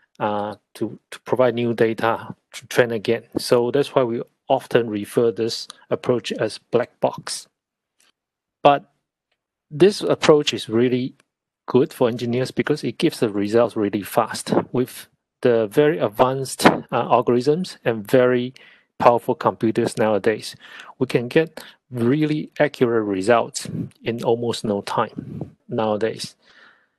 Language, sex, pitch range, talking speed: English, male, 115-140 Hz, 125 wpm